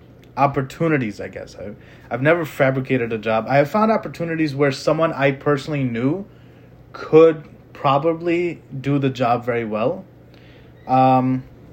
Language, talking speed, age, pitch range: English, 135 wpm, 20-39, 120-140 Hz